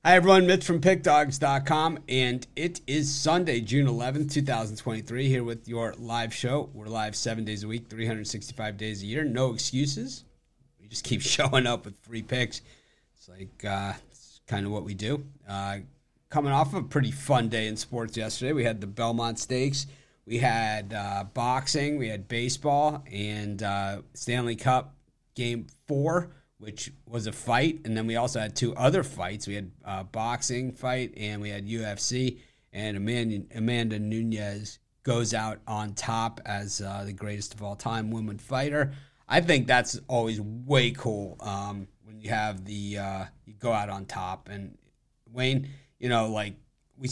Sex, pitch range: male, 105-135 Hz